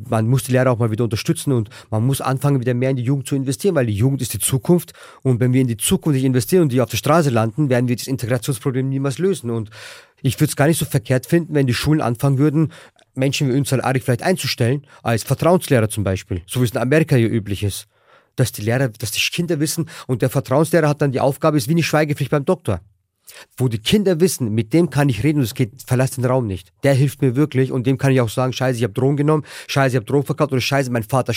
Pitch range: 120-145 Hz